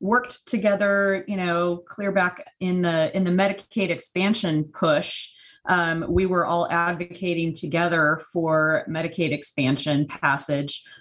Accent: American